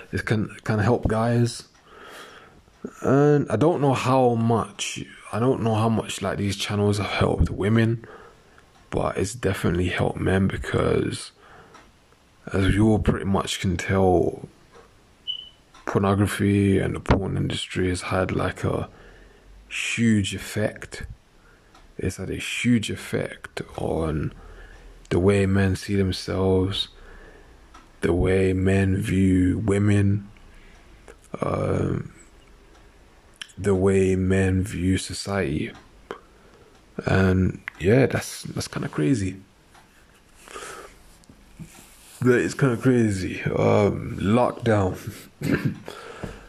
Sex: male